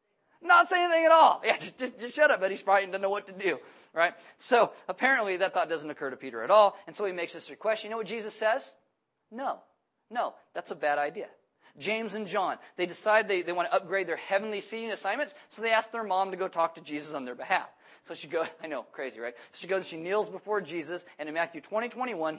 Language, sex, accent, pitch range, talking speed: English, male, American, 175-250 Hz, 245 wpm